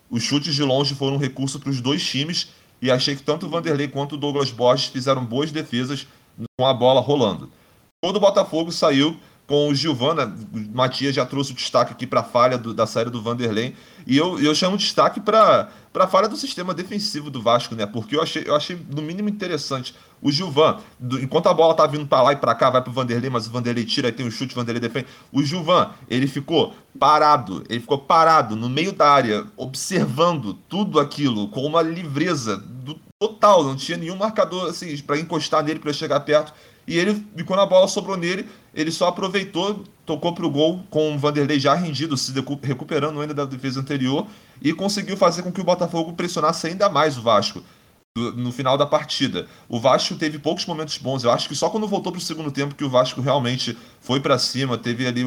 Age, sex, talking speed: 30-49, male, 215 wpm